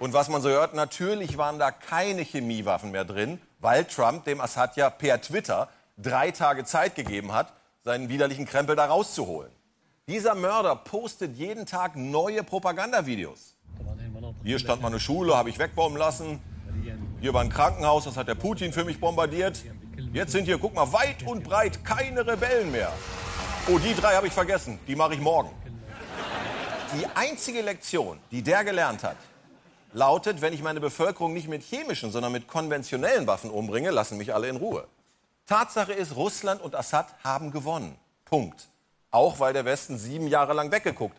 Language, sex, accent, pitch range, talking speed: German, male, German, 125-180 Hz, 170 wpm